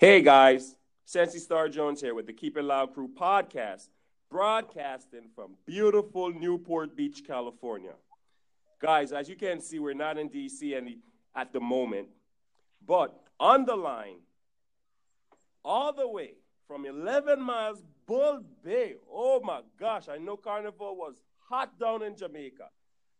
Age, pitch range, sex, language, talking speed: 40-59, 170-260 Hz, male, English, 140 wpm